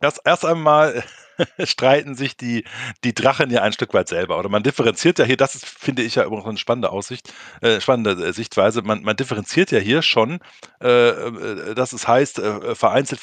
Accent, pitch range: German, 110-145 Hz